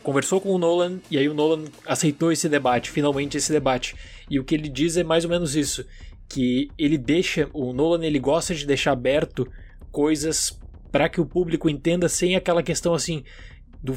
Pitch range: 130-160 Hz